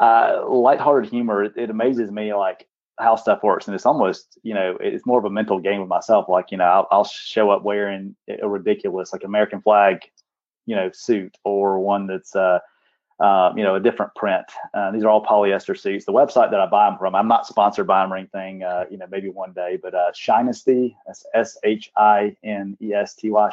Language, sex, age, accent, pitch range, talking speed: English, male, 30-49, American, 95-110 Hz, 205 wpm